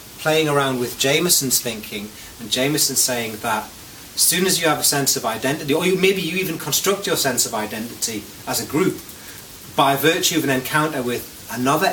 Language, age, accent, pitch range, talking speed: English, 30-49, British, 125-155 Hz, 190 wpm